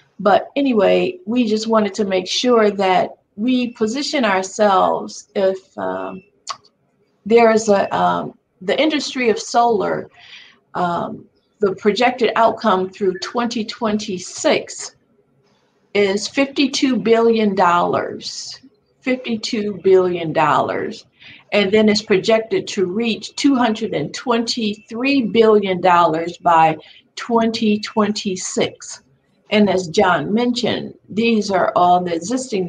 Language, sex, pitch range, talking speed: English, female, 190-230 Hz, 95 wpm